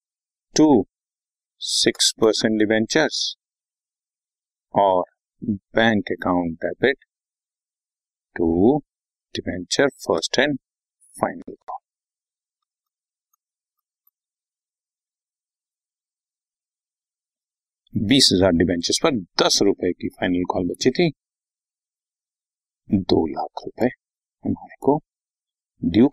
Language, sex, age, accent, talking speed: Hindi, male, 50-69, native, 70 wpm